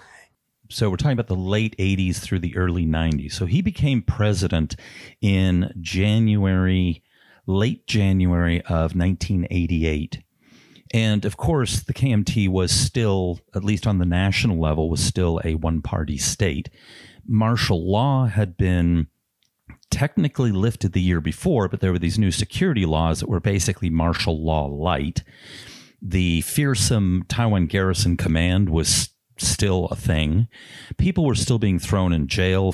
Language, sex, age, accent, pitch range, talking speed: English, male, 40-59, American, 85-105 Hz, 145 wpm